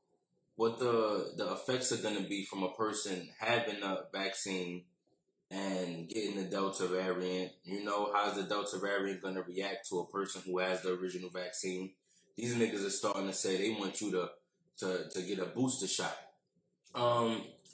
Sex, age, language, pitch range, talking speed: male, 20-39, English, 95-115 Hz, 185 wpm